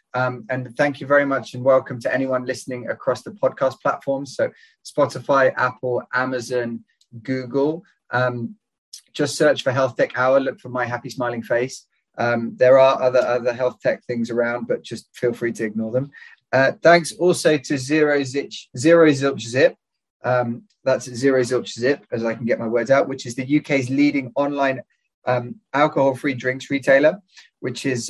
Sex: male